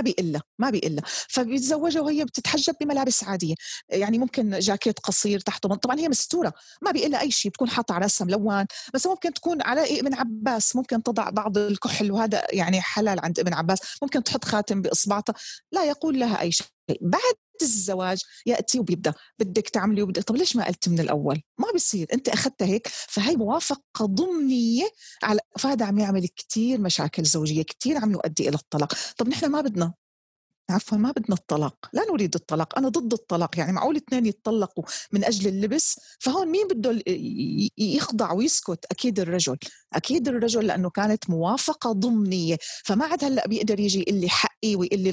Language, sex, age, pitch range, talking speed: Arabic, female, 30-49, 185-260 Hz, 170 wpm